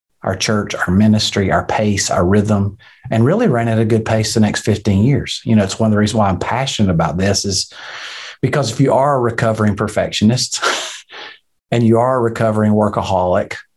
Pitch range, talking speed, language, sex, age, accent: 105-130 Hz, 195 wpm, English, male, 40-59, American